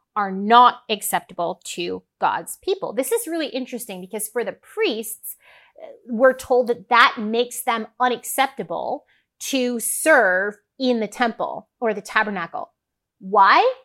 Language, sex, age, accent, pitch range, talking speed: English, female, 30-49, American, 215-280 Hz, 130 wpm